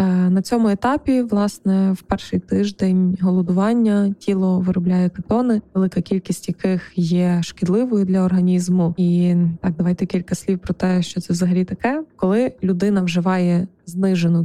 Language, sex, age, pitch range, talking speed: Ukrainian, female, 20-39, 180-205 Hz, 135 wpm